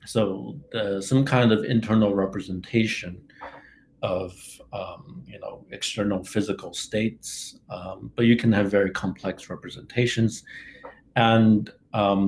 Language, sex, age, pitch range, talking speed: English, male, 50-69, 100-125 Hz, 115 wpm